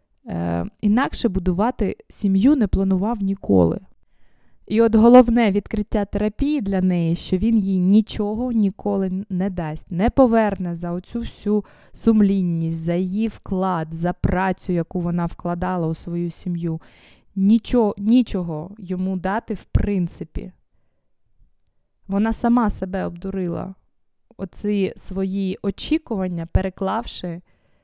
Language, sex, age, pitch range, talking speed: Ukrainian, female, 20-39, 180-210 Hz, 110 wpm